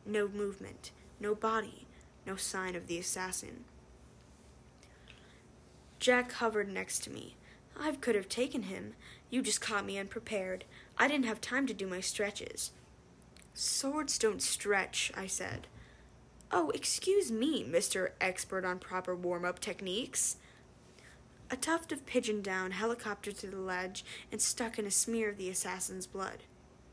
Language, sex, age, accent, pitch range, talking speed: English, female, 10-29, American, 190-235 Hz, 140 wpm